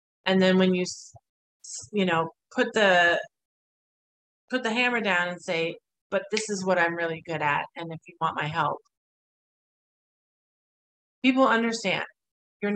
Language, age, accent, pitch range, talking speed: English, 30-49, American, 170-225 Hz, 145 wpm